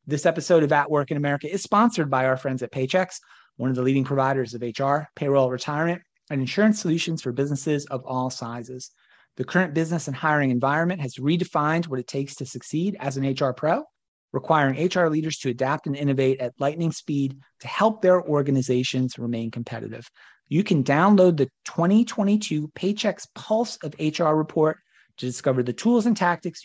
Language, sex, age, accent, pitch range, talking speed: English, male, 30-49, American, 130-170 Hz, 180 wpm